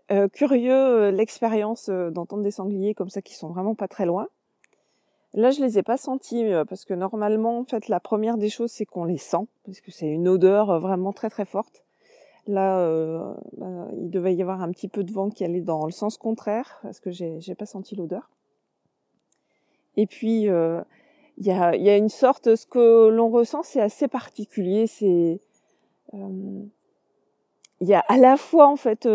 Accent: French